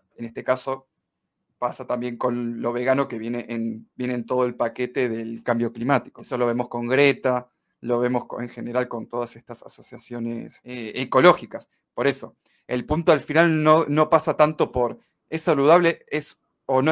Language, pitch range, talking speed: Spanish, 120-150 Hz, 180 wpm